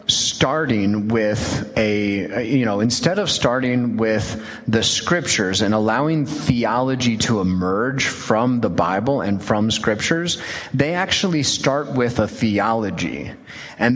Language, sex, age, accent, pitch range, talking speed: English, male, 30-49, American, 110-145 Hz, 125 wpm